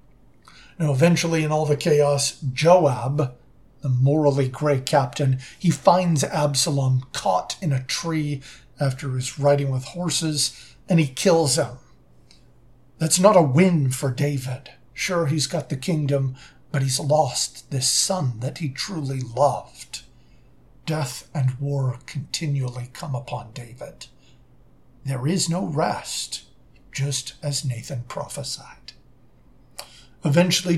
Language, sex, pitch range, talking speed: English, male, 130-160 Hz, 120 wpm